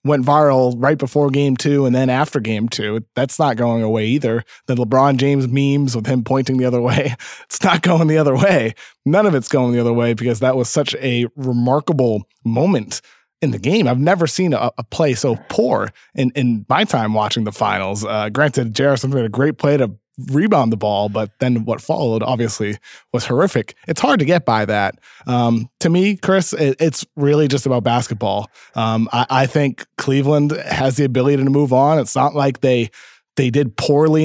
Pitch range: 120-150 Hz